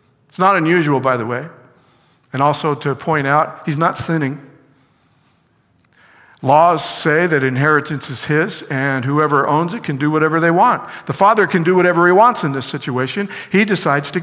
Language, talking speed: English, 175 wpm